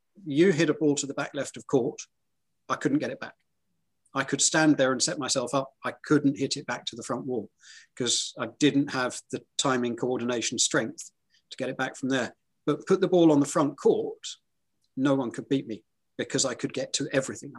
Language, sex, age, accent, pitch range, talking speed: English, male, 40-59, British, 125-150 Hz, 220 wpm